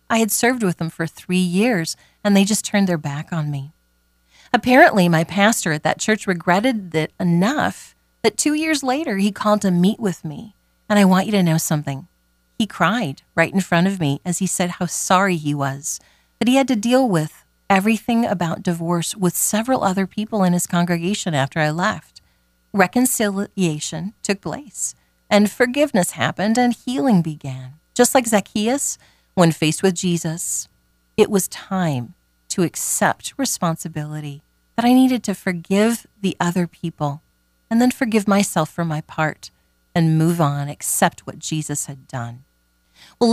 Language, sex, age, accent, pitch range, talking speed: English, female, 40-59, American, 155-215 Hz, 170 wpm